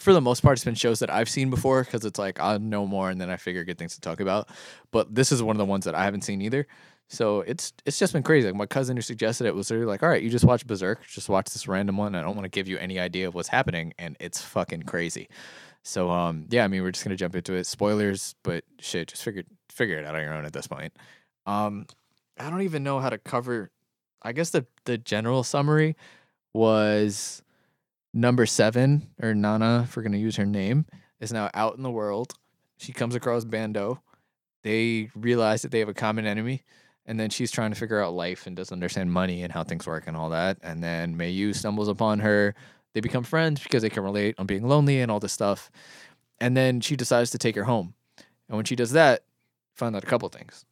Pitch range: 100-125 Hz